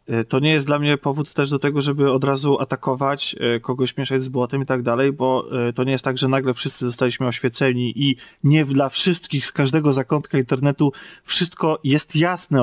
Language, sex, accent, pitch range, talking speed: Polish, male, native, 130-155 Hz, 195 wpm